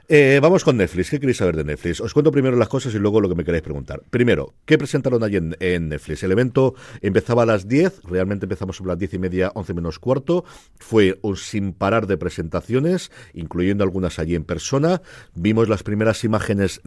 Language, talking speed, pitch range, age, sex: Spanish, 210 wpm, 85-110 Hz, 50-69, male